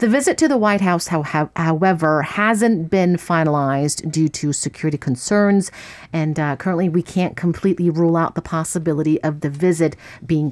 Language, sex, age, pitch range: English, female, 50-69, 150-195 Hz